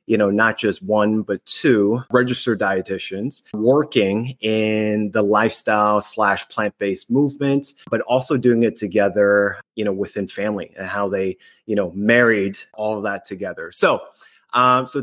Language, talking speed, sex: English, 150 wpm, male